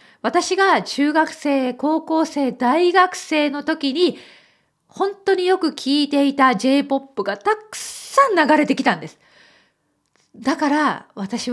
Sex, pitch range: female, 220-320 Hz